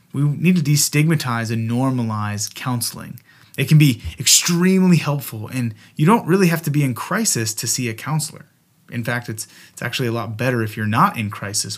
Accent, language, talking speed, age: American, English, 195 wpm, 30-49